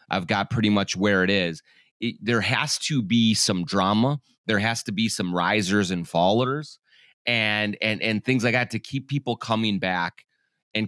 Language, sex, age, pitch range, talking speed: English, male, 30-49, 90-120 Hz, 190 wpm